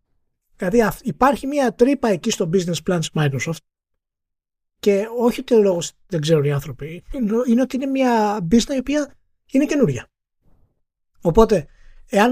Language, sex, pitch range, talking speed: Greek, male, 170-235 Hz, 140 wpm